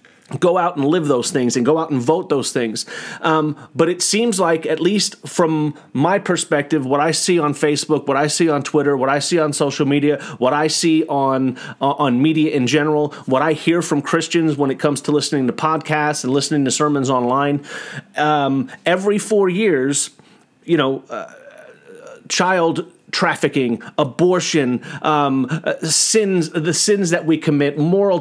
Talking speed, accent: 175 wpm, American